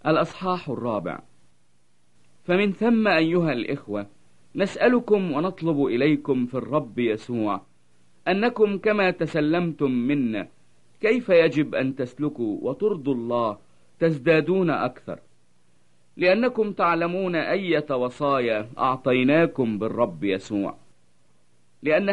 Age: 50-69